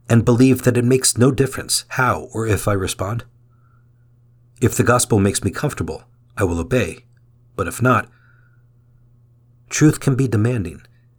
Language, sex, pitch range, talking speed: English, male, 115-125 Hz, 150 wpm